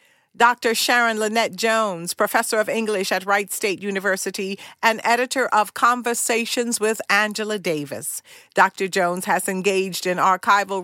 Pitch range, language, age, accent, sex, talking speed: 190-230 Hz, English, 50-69, American, female, 135 wpm